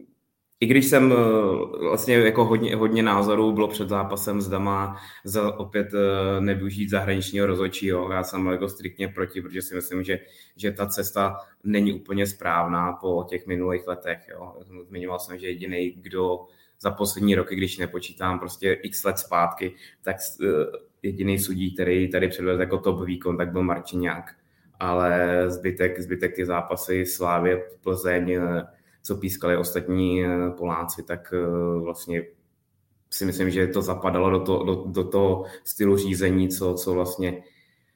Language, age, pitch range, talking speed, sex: Czech, 20-39, 90-100 Hz, 145 wpm, male